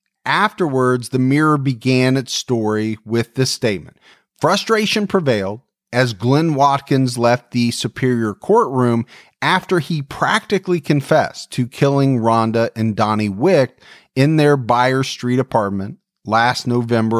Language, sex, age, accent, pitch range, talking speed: English, male, 40-59, American, 120-165 Hz, 120 wpm